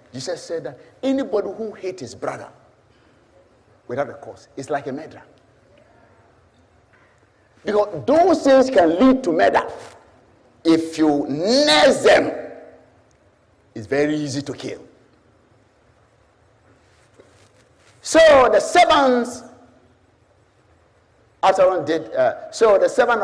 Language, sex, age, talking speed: English, male, 50-69, 90 wpm